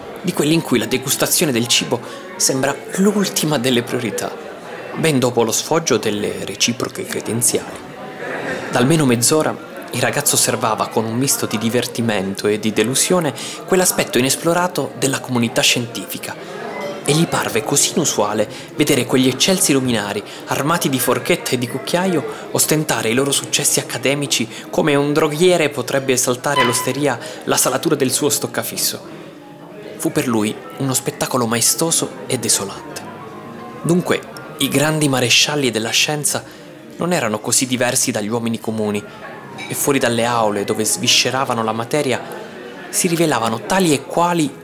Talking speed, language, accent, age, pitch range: 140 wpm, Italian, native, 20-39, 120-155 Hz